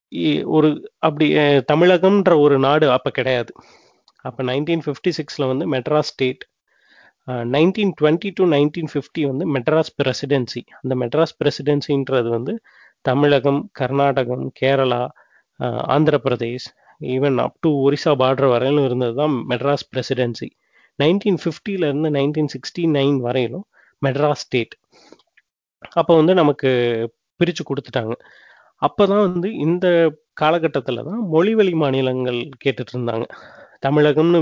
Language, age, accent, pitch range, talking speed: Tamil, 30-49, native, 130-155 Hz, 110 wpm